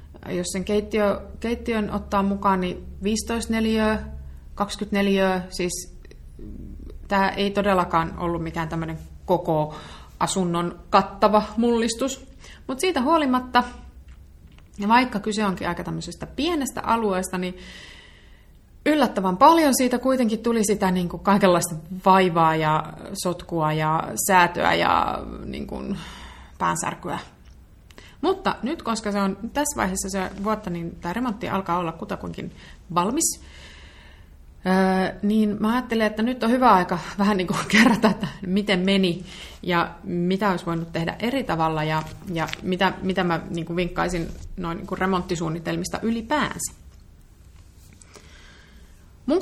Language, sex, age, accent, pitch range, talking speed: Finnish, female, 30-49, native, 165-215 Hz, 120 wpm